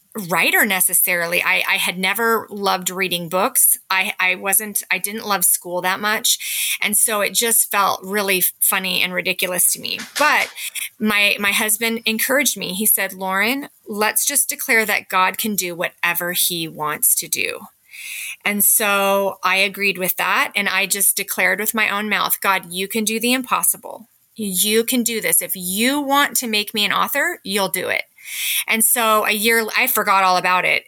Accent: American